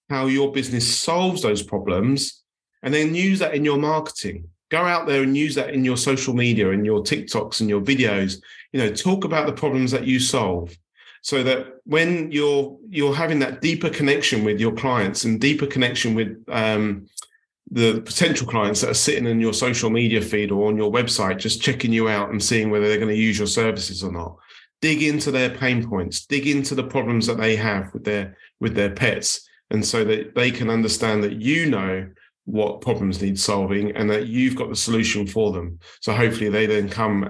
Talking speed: 205 wpm